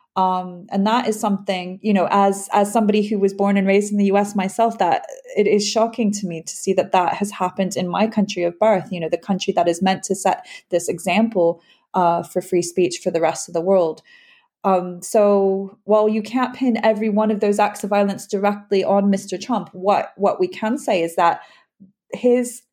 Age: 20-39